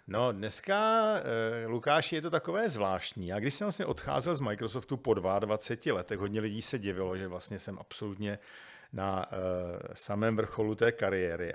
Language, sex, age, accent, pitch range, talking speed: Czech, male, 50-69, native, 105-135 Hz, 155 wpm